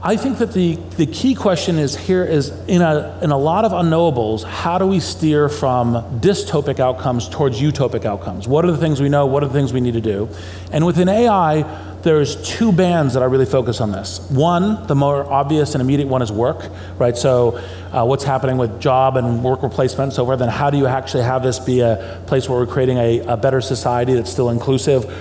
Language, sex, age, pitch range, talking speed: English, male, 40-59, 120-150 Hz, 225 wpm